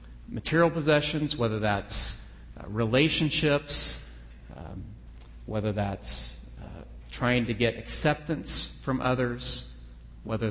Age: 40-59